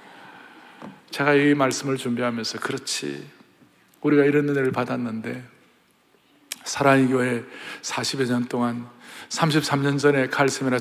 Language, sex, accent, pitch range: Korean, male, native, 110-145 Hz